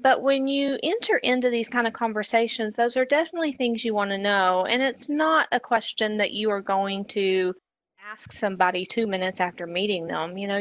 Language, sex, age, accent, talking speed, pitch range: English, female, 30-49, American, 205 wpm, 195-250 Hz